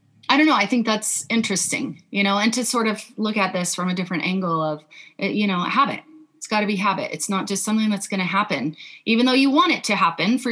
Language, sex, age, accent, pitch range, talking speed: English, female, 30-49, American, 200-245 Hz, 255 wpm